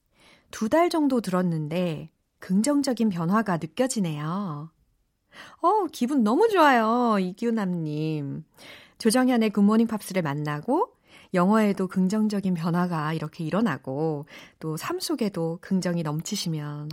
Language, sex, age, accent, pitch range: Korean, female, 40-59, native, 165-240 Hz